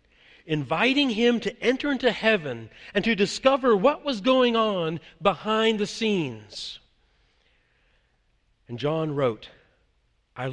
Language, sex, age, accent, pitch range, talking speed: English, male, 50-69, American, 165-235 Hz, 115 wpm